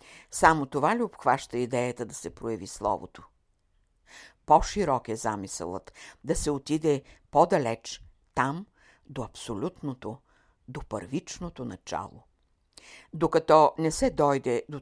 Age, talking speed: 60-79, 110 wpm